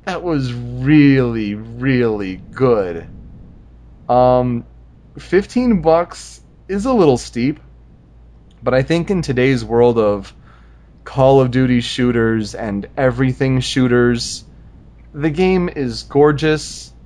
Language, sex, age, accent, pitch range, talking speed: English, male, 30-49, American, 110-135 Hz, 105 wpm